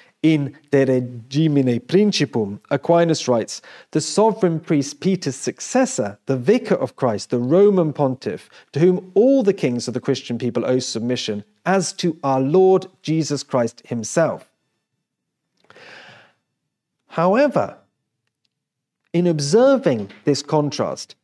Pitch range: 140-200 Hz